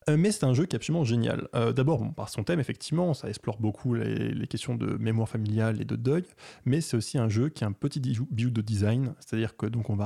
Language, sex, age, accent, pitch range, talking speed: French, male, 20-39, French, 110-130 Hz, 280 wpm